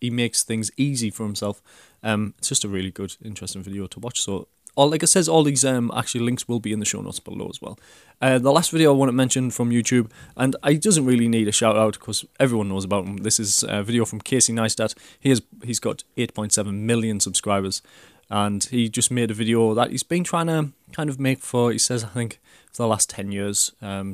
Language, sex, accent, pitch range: English, male, British, 105-125 Hz